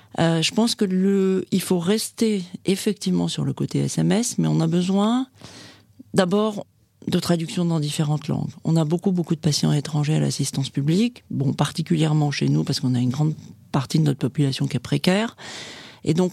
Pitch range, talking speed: 145-185 Hz, 185 wpm